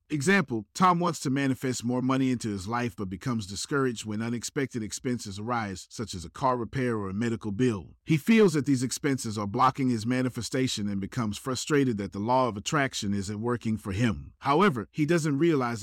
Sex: male